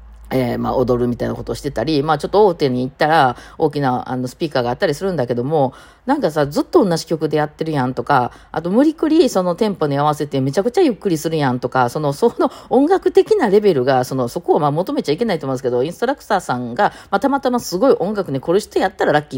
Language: Japanese